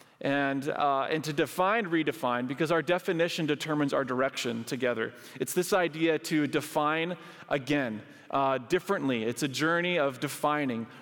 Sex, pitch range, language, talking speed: male, 140-185 Hz, English, 140 wpm